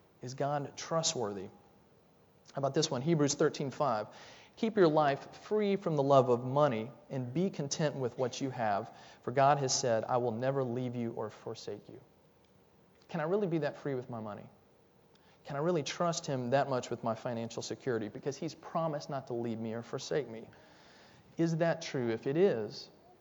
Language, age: English, 30-49